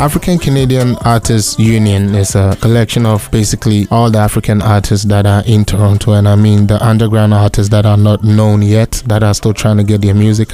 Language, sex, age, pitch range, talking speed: English, male, 20-39, 105-115 Hz, 205 wpm